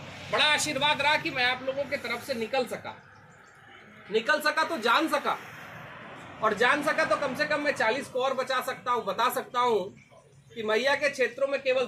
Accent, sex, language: native, male, Hindi